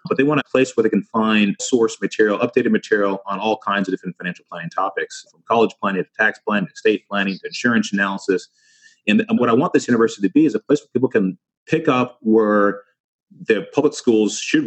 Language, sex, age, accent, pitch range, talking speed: English, male, 30-49, American, 95-130 Hz, 220 wpm